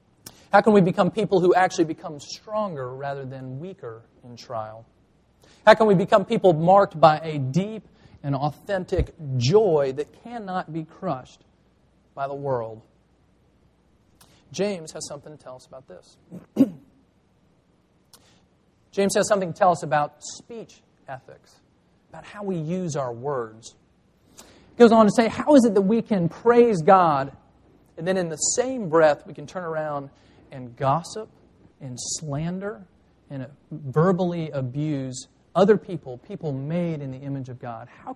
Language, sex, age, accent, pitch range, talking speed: English, male, 40-59, American, 135-190 Hz, 150 wpm